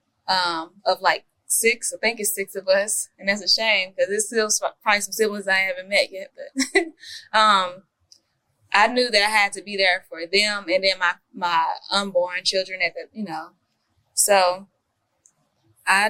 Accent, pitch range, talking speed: American, 185-220 Hz, 180 wpm